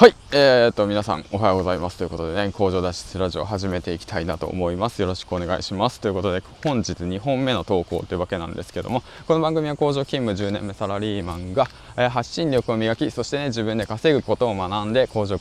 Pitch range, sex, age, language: 95-125 Hz, male, 20-39, Japanese